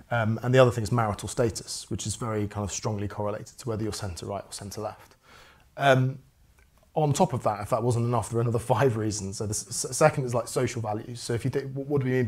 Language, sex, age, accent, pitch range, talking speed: English, male, 30-49, British, 105-125 Hz, 250 wpm